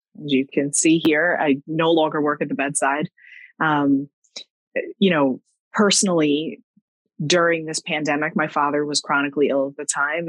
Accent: American